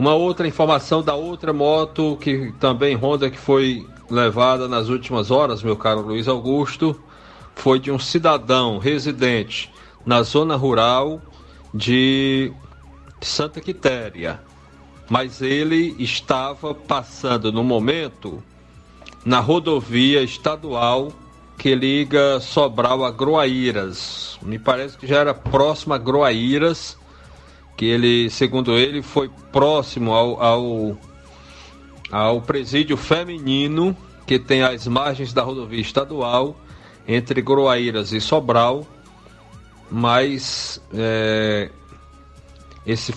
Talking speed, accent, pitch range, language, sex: 105 wpm, Brazilian, 110-140 Hz, Portuguese, male